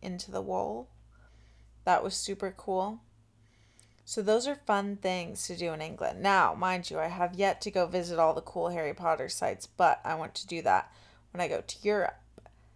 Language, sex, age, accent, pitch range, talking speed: English, female, 20-39, American, 160-200 Hz, 200 wpm